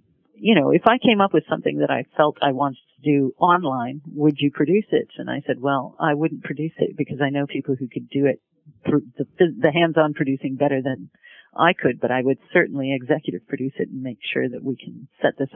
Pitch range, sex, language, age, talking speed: 135-155 Hz, female, English, 40-59, 230 wpm